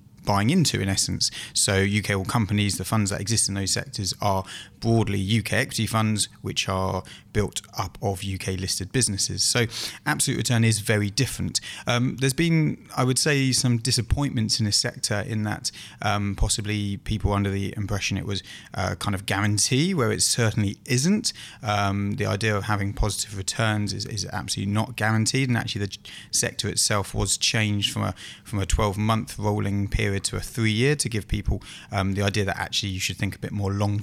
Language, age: English, 20-39